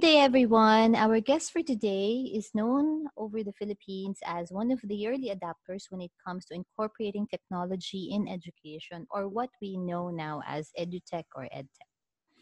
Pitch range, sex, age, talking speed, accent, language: 175-225 Hz, female, 20-39, 170 wpm, Filipino, English